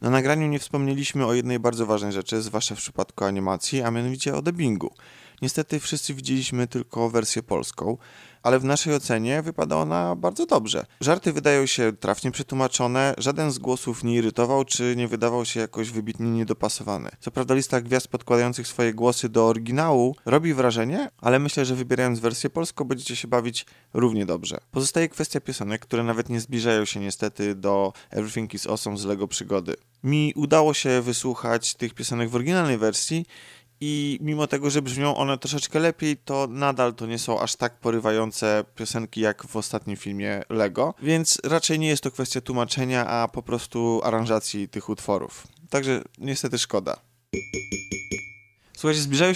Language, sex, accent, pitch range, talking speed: Polish, male, native, 110-140 Hz, 165 wpm